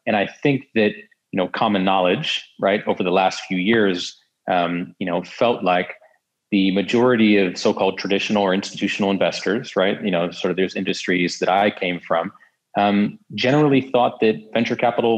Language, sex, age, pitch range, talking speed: English, male, 30-49, 90-110 Hz, 175 wpm